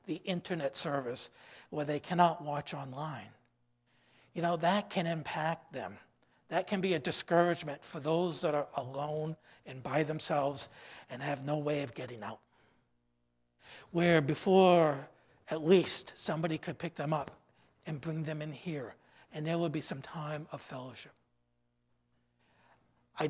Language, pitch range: English, 130-170 Hz